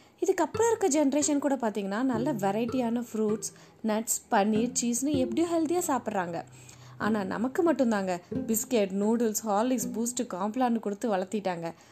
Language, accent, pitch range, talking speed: Tamil, native, 210-325 Hz, 120 wpm